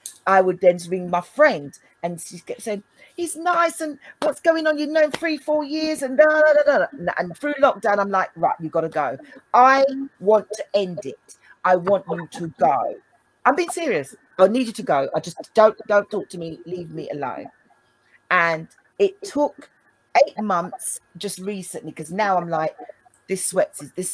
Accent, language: British, English